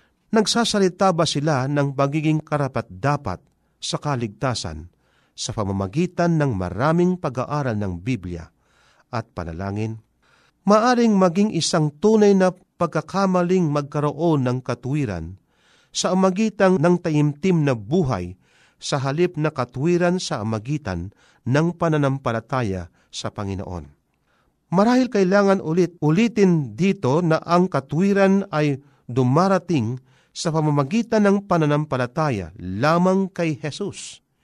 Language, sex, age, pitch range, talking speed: Filipino, male, 50-69, 125-180 Hz, 105 wpm